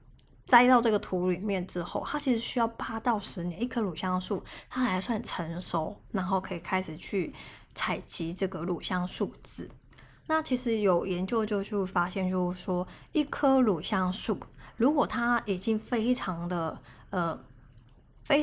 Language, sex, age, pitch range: Chinese, female, 20-39, 180-230 Hz